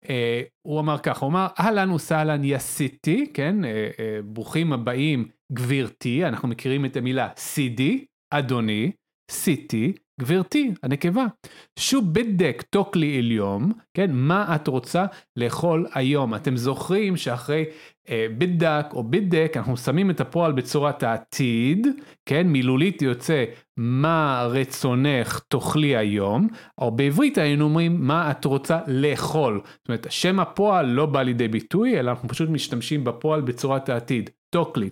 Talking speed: 130 wpm